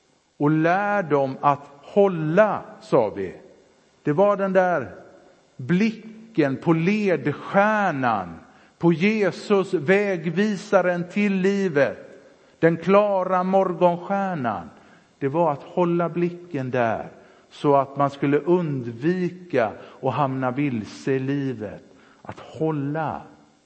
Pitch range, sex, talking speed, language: 140-180 Hz, male, 100 wpm, Swedish